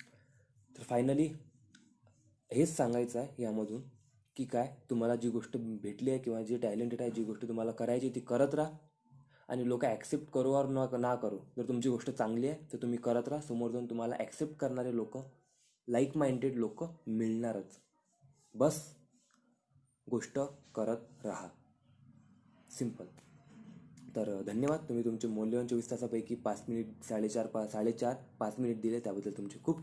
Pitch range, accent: 115-140 Hz, native